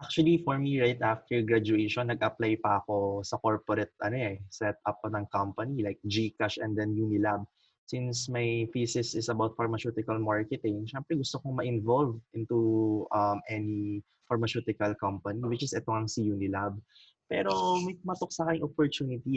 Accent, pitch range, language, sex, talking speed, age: native, 105-130 Hz, Filipino, male, 150 wpm, 20-39